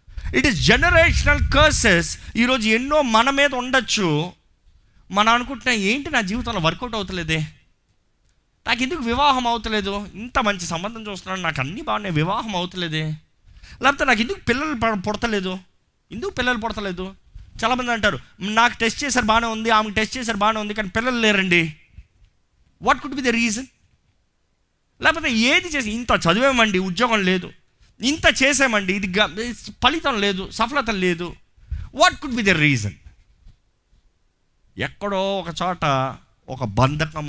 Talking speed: 130 wpm